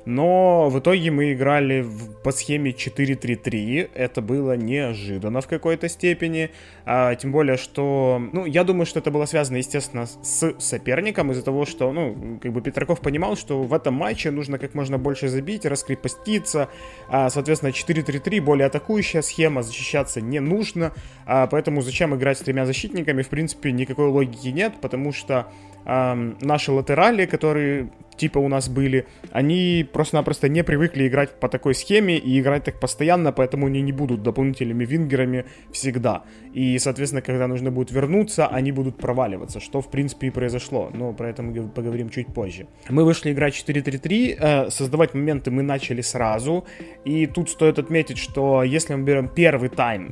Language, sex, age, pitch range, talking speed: Ukrainian, male, 20-39, 130-155 Hz, 160 wpm